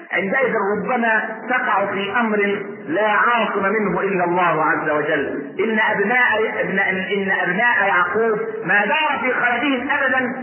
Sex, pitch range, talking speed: male, 210-295 Hz, 130 wpm